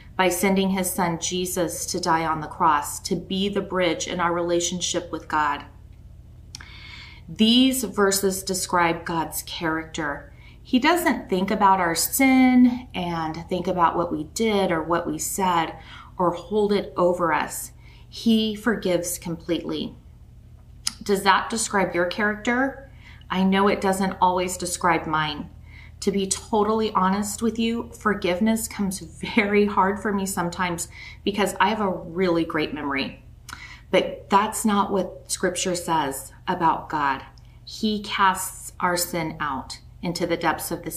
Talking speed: 145 wpm